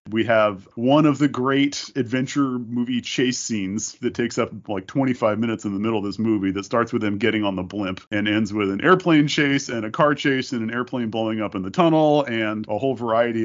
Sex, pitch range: male, 110-135 Hz